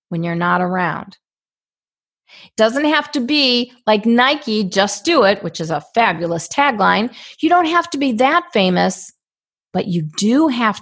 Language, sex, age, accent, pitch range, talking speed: English, female, 40-59, American, 195-270 Hz, 165 wpm